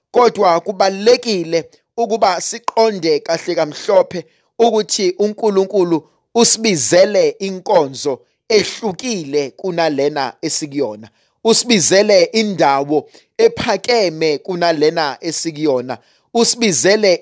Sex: male